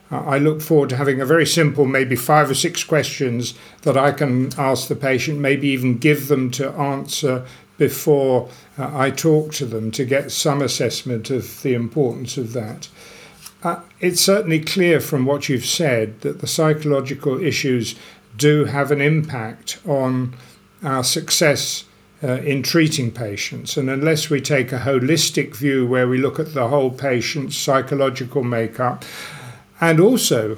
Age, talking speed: 50-69, 160 wpm